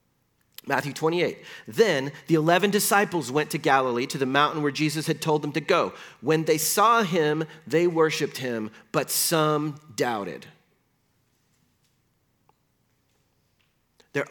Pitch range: 150-200 Hz